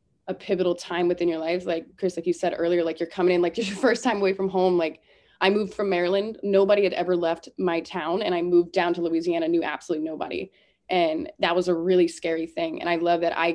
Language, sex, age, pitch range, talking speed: English, female, 20-39, 165-190 Hz, 245 wpm